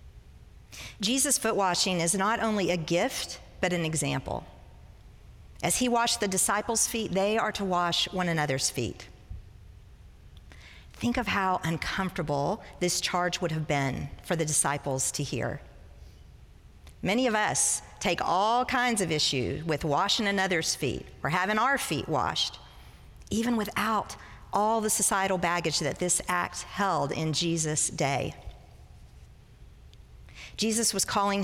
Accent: American